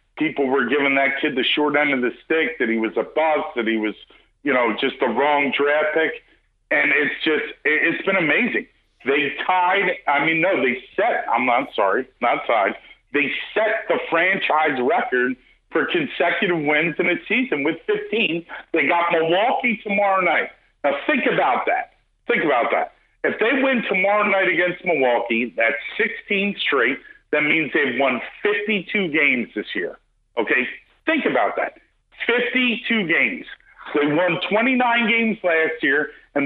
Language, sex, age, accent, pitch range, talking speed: English, male, 50-69, American, 145-200 Hz, 165 wpm